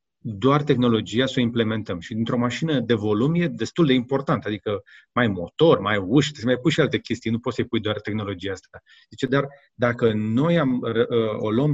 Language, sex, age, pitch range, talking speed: Romanian, male, 30-49, 115-150 Hz, 210 wpm